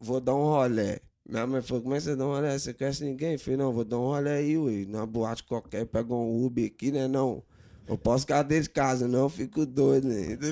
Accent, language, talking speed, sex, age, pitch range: Brazilian, Portuguese, 270 wpm, male, 20-39, 130-180 Hz